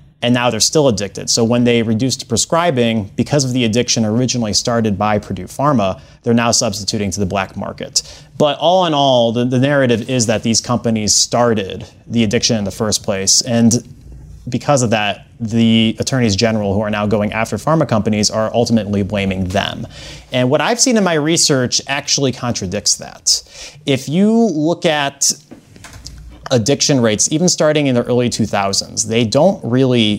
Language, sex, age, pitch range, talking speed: English, male, 30-49, 110-140 Hz, 175 wpm